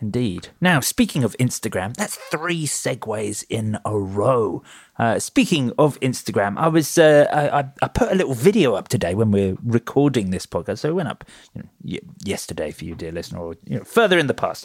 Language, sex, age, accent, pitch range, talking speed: English, male, 30-49, British, 110-165 Hz, 195 wpm